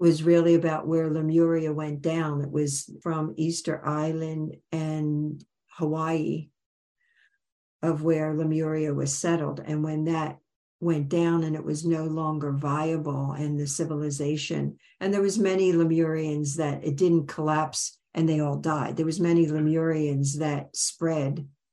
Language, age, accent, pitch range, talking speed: English, 60-79, American, 150-165 Hz, 145 wpm